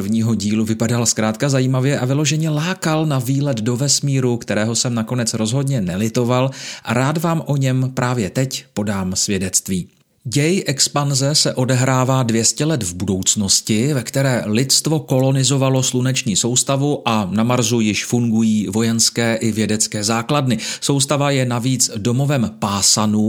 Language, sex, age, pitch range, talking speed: Czech, male, 40-59, 110-140 Hz, 140 wpm